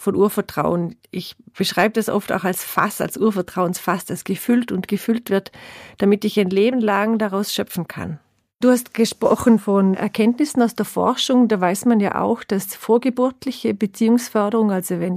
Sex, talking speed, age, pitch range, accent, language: female, 165 wpm, 40-59, 190-230 Hz, German, German